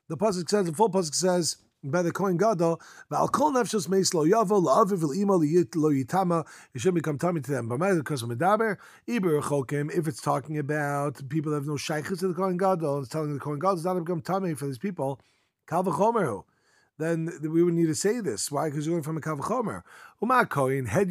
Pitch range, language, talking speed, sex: 145-195 Hz, English, 235 wpm, male